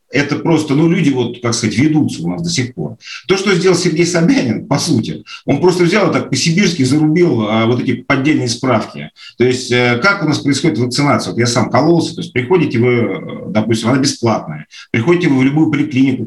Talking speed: 200 wpm